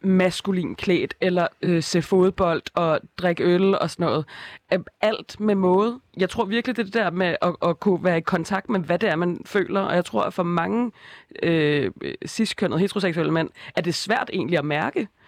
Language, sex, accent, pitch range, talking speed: Danish, female, native, 175-210 Hz, 195 wpm